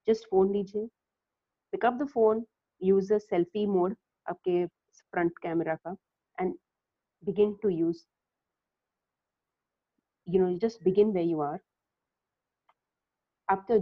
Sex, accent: female, native